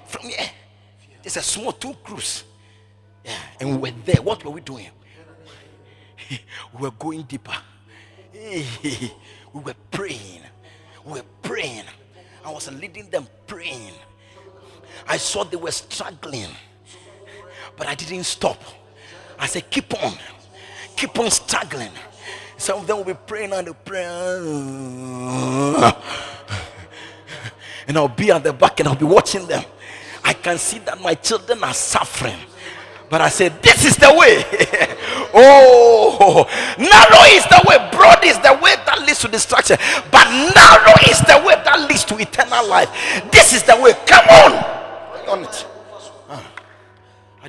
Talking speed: 145 wpm